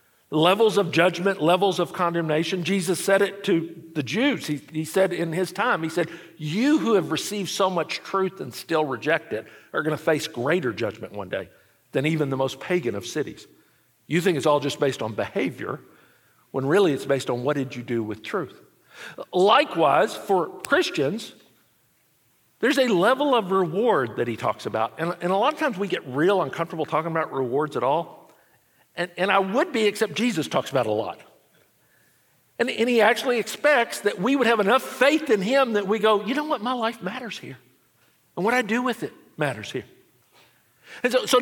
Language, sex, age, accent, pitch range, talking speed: English, male, 50-69, American, 160-230 Hz, 200 wpm